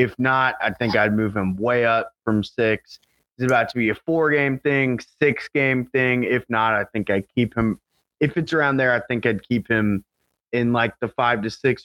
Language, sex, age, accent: English, male, 30-49, American